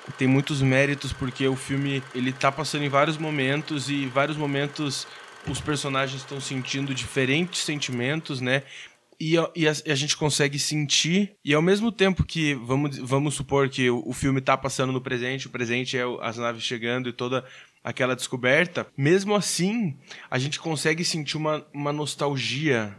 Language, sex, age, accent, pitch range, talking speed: Portuguese, male, 20-39, Brazilian, 130-150 Hz, 175 wpm